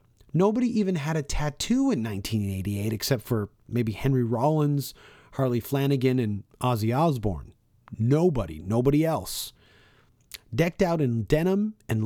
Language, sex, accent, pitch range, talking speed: English, male, American, 115-145 Hz, 125 wpm